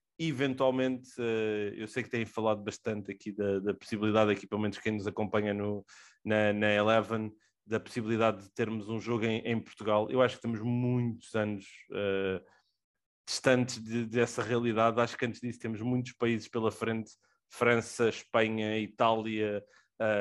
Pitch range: 110-125 Hz